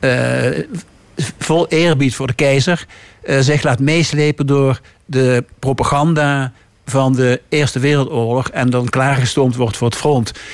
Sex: male